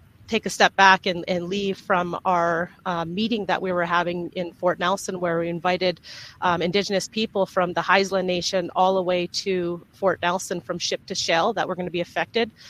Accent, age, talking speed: American, 30-49, 210 wpm